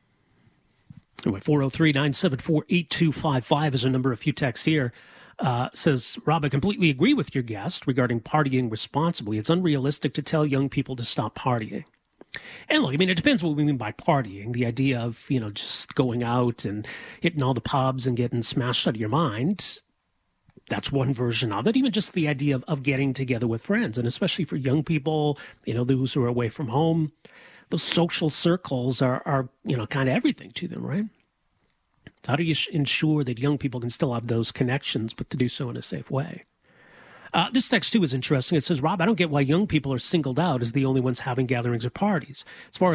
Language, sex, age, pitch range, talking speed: English, male, 40-59, 125-165 Hz, 225 wpm